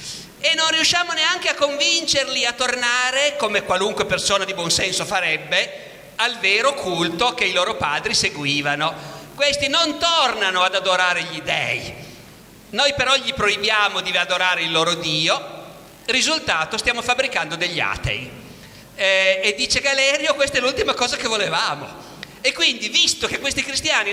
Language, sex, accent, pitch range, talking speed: Italian, male, native, 160-240 Hz, 150 wpm